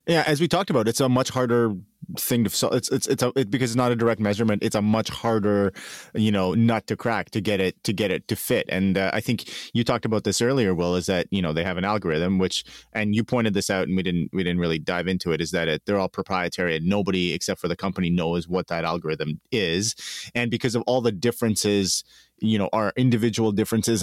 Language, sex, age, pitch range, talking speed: English, male, 30-49, 95-115 Hz, 250 wpm